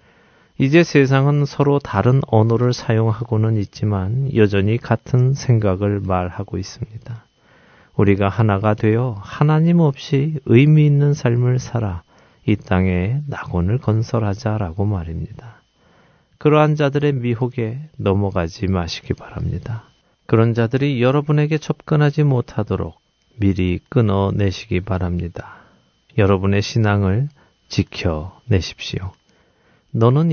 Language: Korean